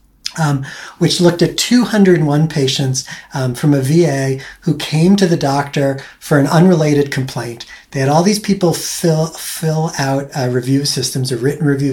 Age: 40-59